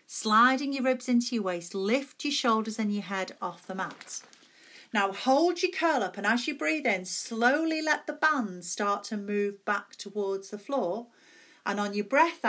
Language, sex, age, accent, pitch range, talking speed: English, female, 40-59, British, 185-245 Hz, 190 wpm